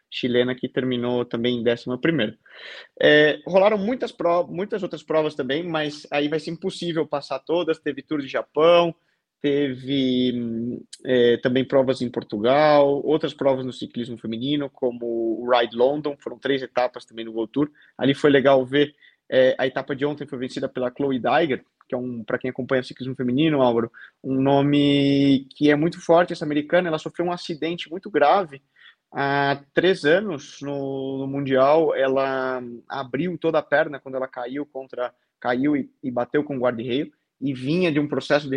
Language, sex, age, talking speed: Portuguese, male, 20-39, 175 wpm